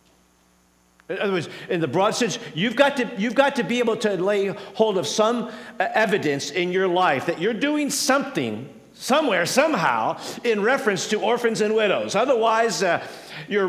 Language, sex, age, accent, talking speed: English, male, 50-69, American, 170 wpm